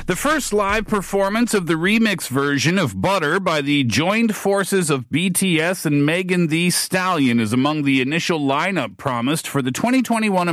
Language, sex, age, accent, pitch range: Korean, male, 50-69, American, 130-175 Hz